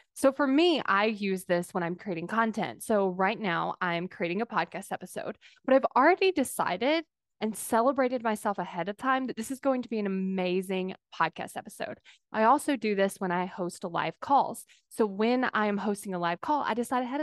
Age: 10-29